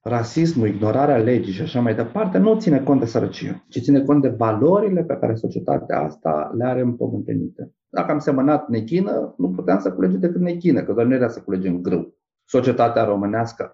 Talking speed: 190 wpm